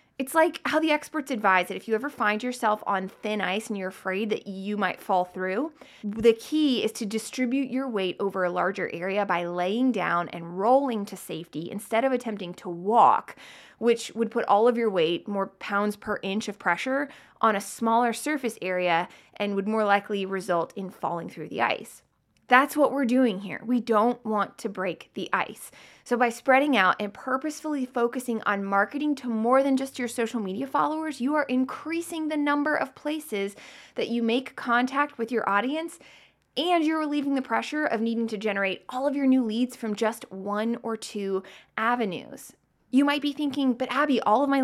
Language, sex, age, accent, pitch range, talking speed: English, female, 20-39, American, 200-265 Hz, 195 wpm